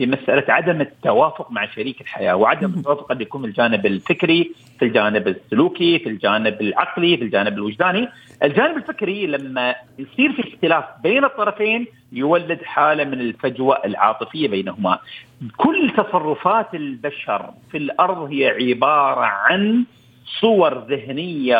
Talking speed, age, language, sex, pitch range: 125 wpm, 50-69, Arabic, male, 135-195 Hz